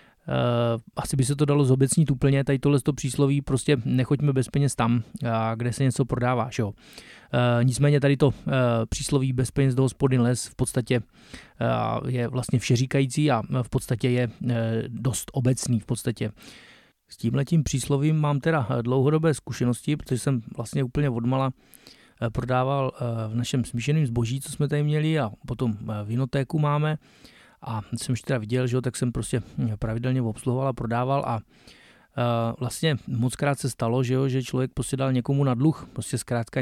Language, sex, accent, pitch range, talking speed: Czech, male, native, 120-145 Hz, 165 wpm